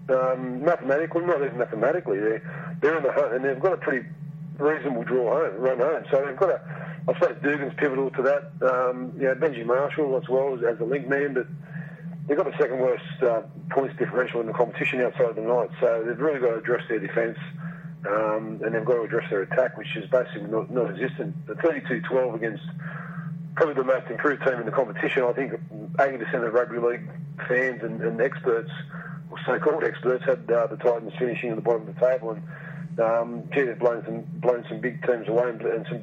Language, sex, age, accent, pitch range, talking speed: English, male, 40-59, Australian, 125-160 Hz, 210 wpm